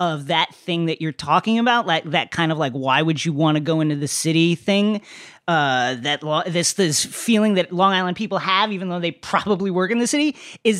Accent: American